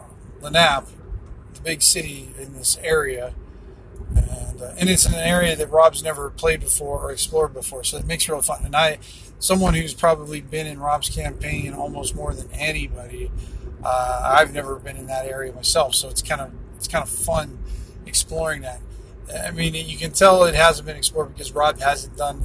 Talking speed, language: 195 wpm, English